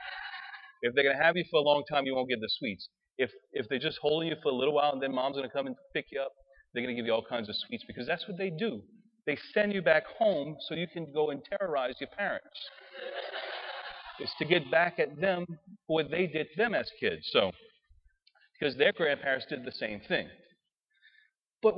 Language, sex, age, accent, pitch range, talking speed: English, male, 40-59, American, 125-195 Hz, 235 wpm